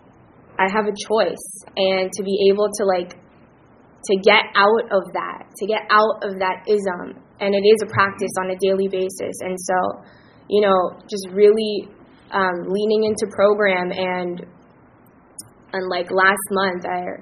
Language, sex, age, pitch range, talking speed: English, female, 20-39, 180-195 Hz, 160 wpm